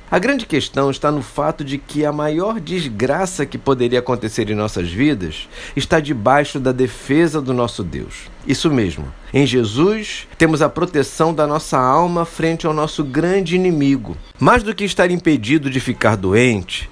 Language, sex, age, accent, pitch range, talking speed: Portuguese, male, 50-69, Brazilian, 125-160 Hz, 165 wpm